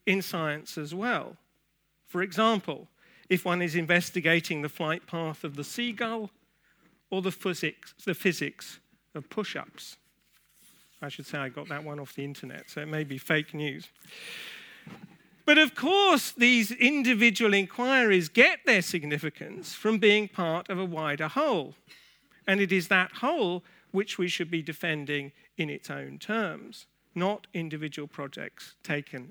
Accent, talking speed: British, 145 wpm